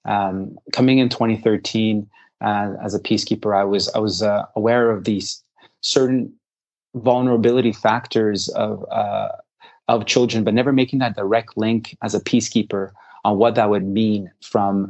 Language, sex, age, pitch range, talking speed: English, male, 30-49, 105-120 Hz, 155 wpm